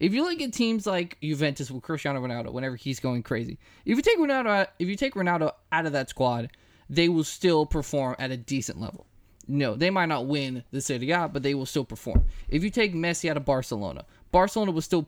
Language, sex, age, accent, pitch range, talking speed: English, male, 20-39, American, 130-195 Hz, 215 wpm